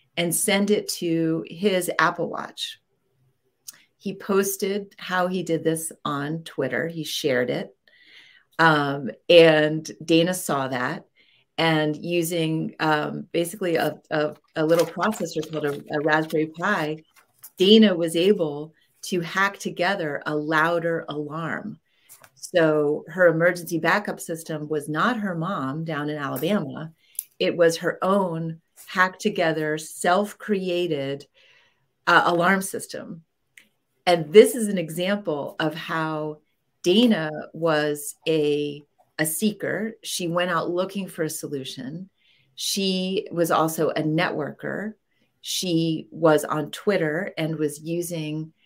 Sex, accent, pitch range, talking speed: female, American, 155-180 Hz, 120 wpm